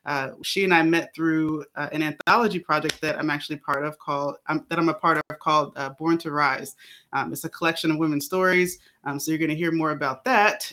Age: 20-39